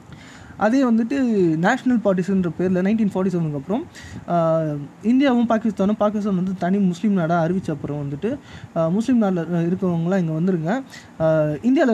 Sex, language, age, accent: male, Tamil, 20-39, native